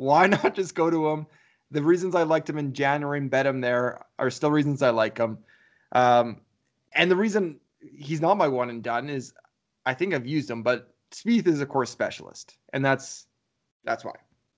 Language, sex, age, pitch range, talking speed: English, male, 20-39, 125-155 Hz, 200 wpm